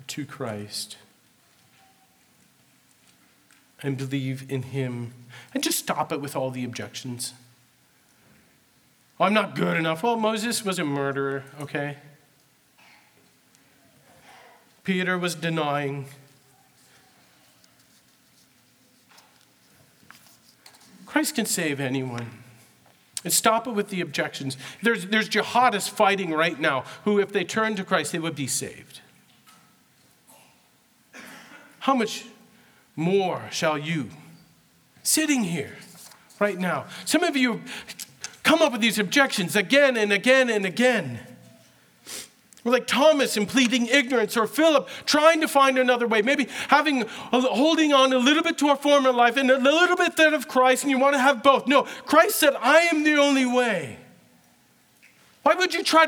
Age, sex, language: 40-59, male, English